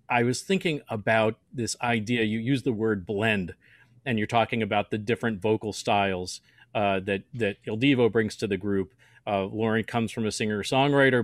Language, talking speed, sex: English, 185 wpm, male